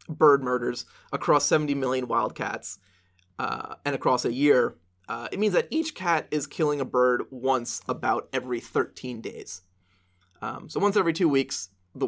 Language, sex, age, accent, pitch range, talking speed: English, male, 20-39, American, 115-165 Hz, 165 wpm